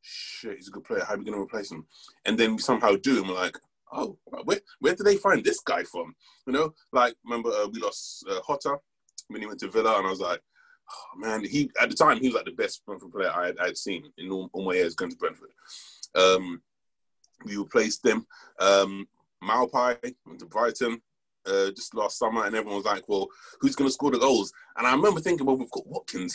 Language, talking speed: English, 230 wpm